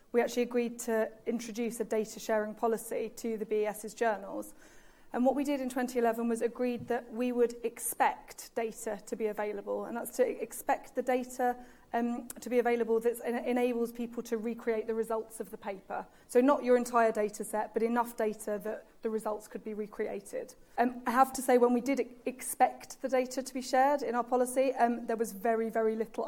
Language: English